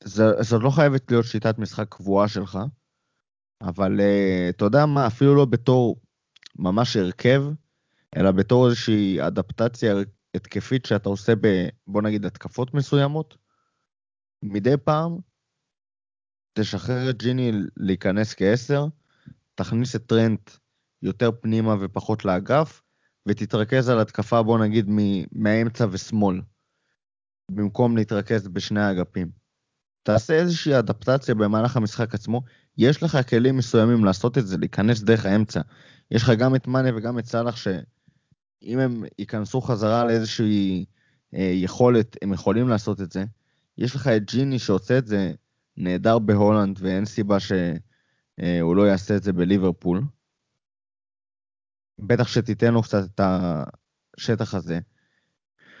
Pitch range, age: 100-125 Hz, 20-39